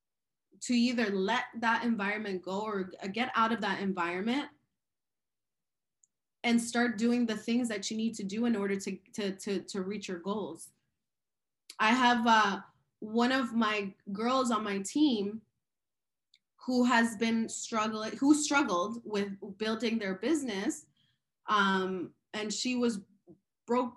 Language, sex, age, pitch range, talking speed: English, female, 20-39, 200-235 Hz, 145 wpm